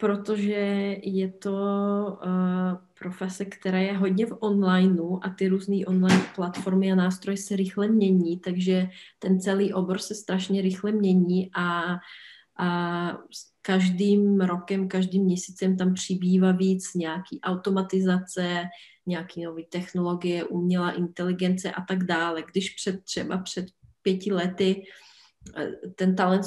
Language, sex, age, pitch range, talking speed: Czech, female, 30-49, 180-195 Hz, 120 wpm